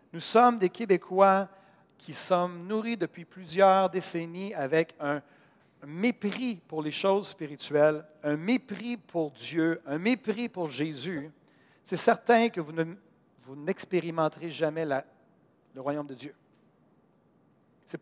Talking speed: 125 wpm